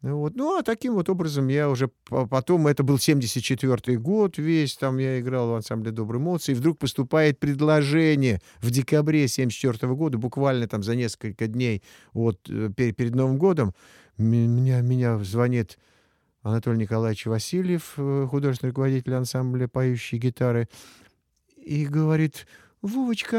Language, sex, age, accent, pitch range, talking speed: Russian, male, 50-69, native, 120-170 Hz, 135 wpm